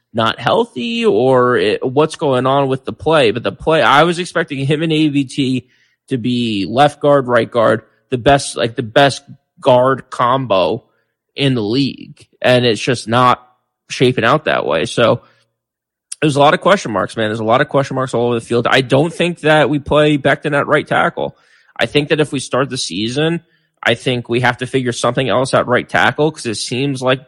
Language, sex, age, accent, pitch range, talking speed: English, male, 20-39, American, 120-145 Hz, 205 wpm